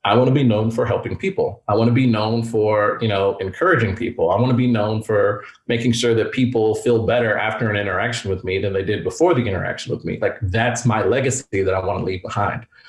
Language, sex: English, male